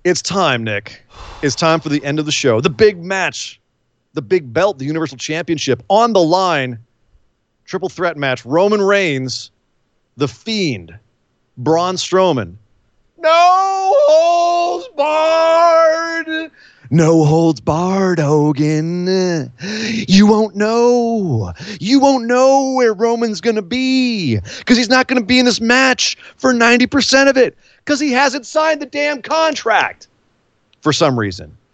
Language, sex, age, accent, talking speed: English, male, 30-49, American, 140 wpm